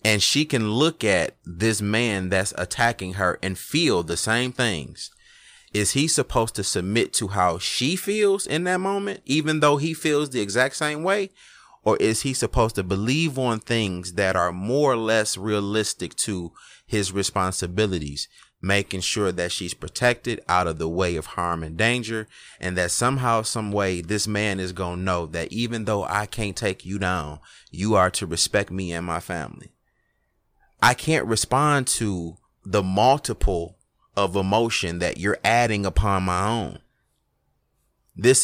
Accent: American